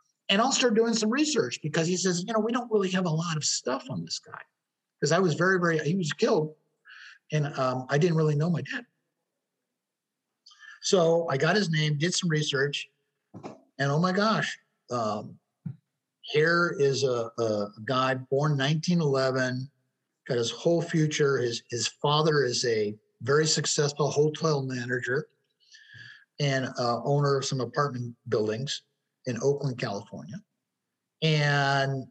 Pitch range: 130-165 Hz